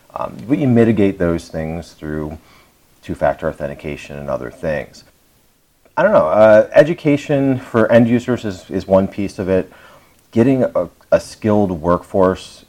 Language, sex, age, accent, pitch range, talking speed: English, male, 40-59, American, 80-100 Hz, 145 wpm